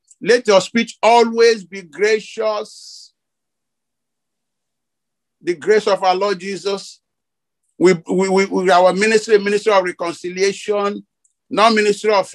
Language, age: English, 50-69